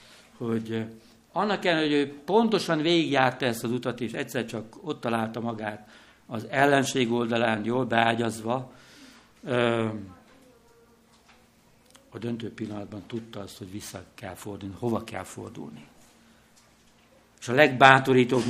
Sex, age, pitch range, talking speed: male, 60-79, 115-165 Hz, 115 wpm